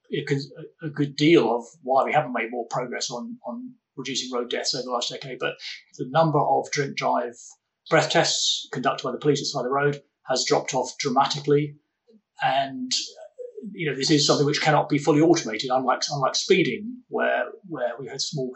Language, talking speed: English, 190 wpm